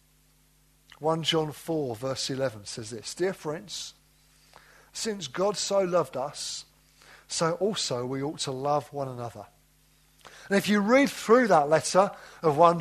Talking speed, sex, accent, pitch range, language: 145 wpm, male, British, 150-200 Hz, English